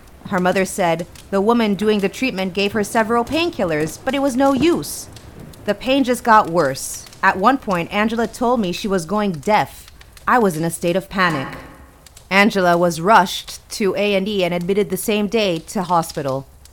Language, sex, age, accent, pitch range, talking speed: English, female, 30-49, American, 170-220 Hz, 185 wpm